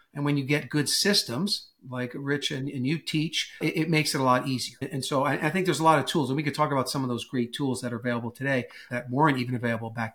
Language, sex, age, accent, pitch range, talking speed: English, male, 50-69, American, 130-155 Hz, 285 wpm